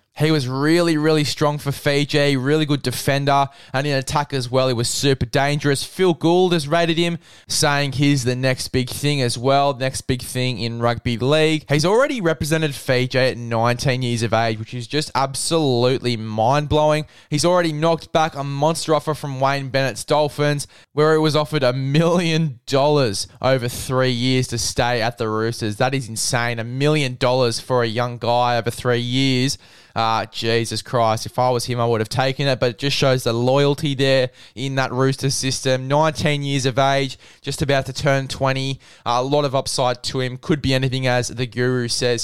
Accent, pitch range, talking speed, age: Australian, 120-145 Hz, 195 wpm, 10-29